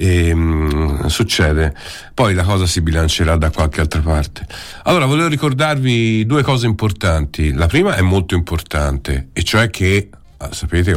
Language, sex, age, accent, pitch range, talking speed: Italian, male, 50-69, native, 80-110 Hz, 150 wpm